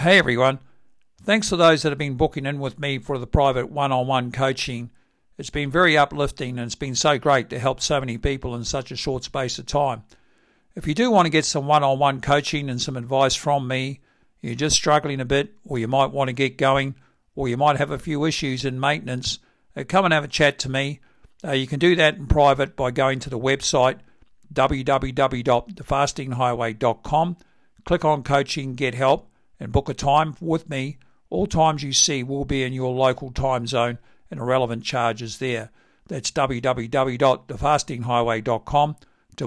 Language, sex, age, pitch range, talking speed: English, male, 60-79, 125-145 Hz, 185 wpm